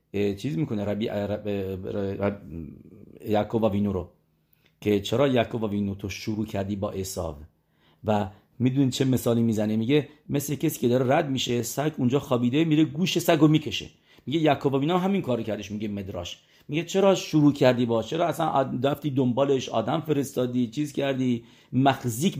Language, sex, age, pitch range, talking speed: English, male, 40-59, 105-140 Hz, 150 wpm